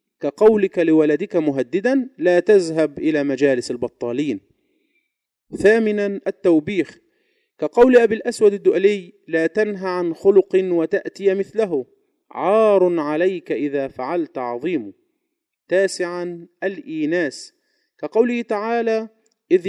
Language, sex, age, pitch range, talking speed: Arabic, male, 40-59, 150-225 Hz, 90 wpm